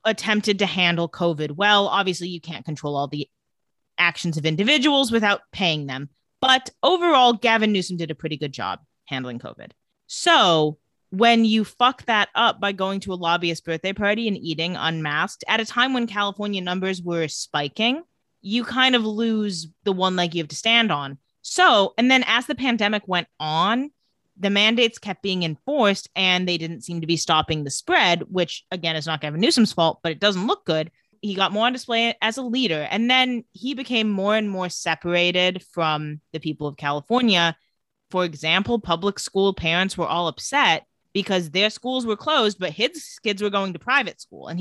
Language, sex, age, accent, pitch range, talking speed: English, female, 30-49, American, 165-230 Hz, 190 wpm